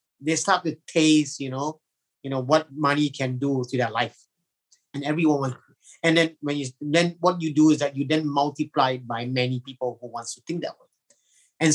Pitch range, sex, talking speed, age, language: 130-160 Hz, male, 210 wpm, 30-49, English